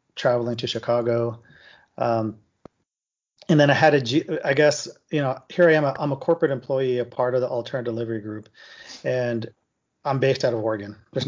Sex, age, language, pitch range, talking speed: male, 30-49, English, 115-135 Hz, 185 wpm